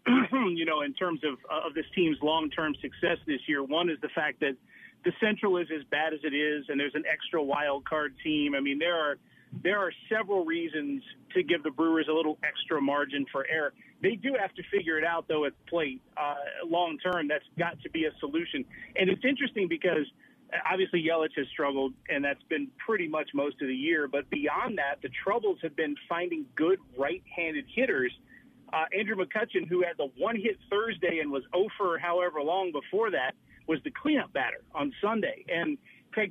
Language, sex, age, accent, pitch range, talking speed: English, male, 40-59, American, 155-220 Hz, 195 wpm